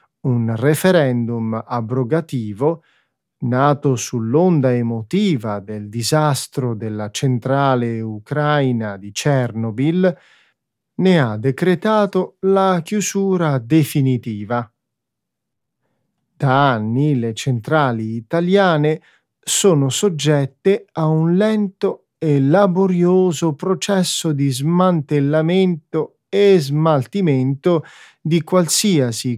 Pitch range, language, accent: 120-165 Hz, Italian, native